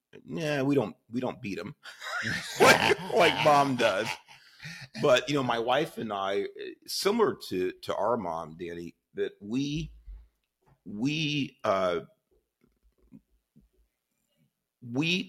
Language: English